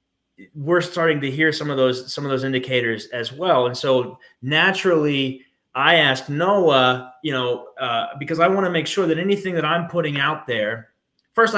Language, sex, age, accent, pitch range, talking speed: English, male, 30-49, American, 130-180 Hz, 185 wpm